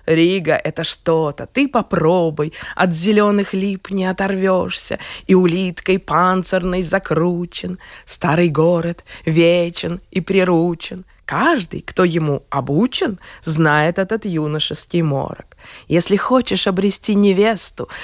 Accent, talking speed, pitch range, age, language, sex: native, 105 wpm, 160-200 Hz, 20-39, Russian, female